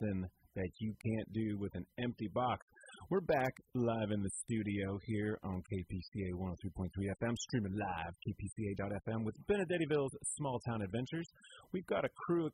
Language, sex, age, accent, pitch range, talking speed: English, male, 30-49, American, 95-145 Hz, 155 wpm